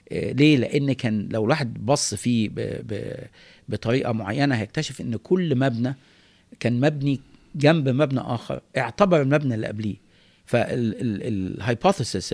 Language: Arabic